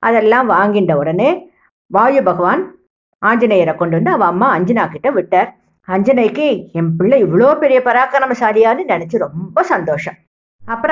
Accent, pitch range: Indian, 185-260 Hz